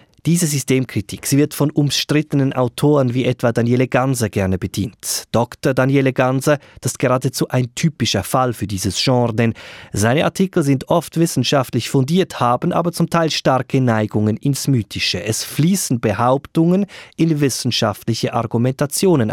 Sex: male